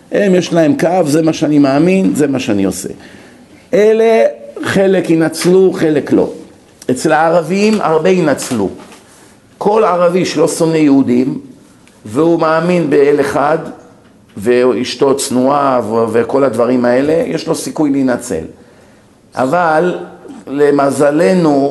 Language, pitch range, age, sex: Hebrew, 145-200 Hz, 50-69, male